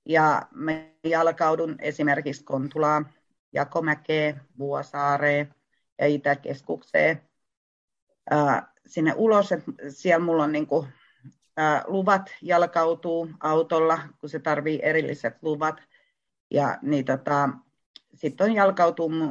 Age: 40-59